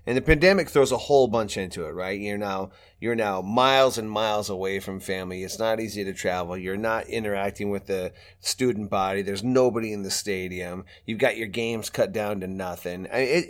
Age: 30-49